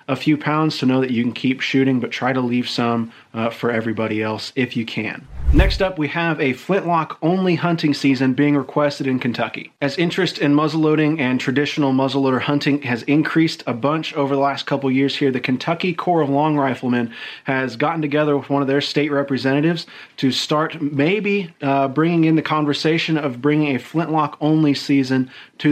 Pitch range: 130-155 Hz